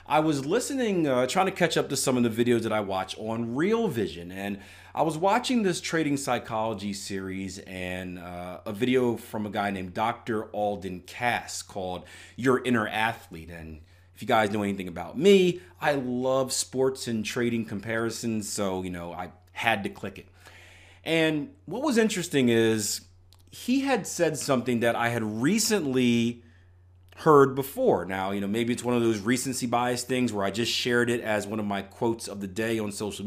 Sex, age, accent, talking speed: male, 30-49, American, 190 wpm